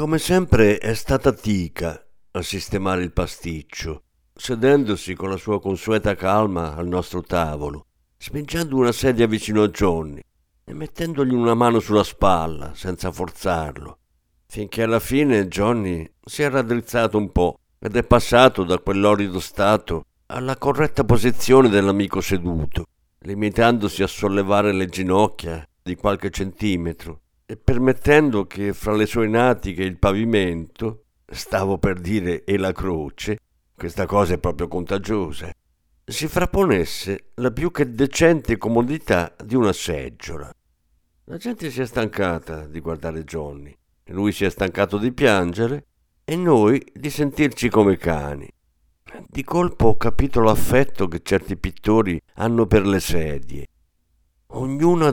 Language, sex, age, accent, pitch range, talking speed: Italian, male, 50-69, native, 85-120 Hz, 135 wpm